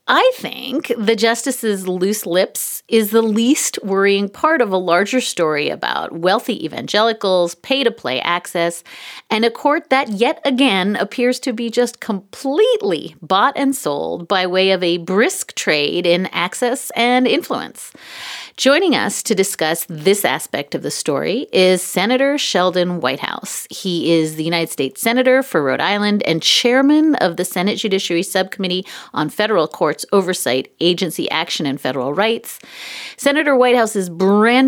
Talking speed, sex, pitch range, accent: 145 wpm, female, 180-245 Hz, American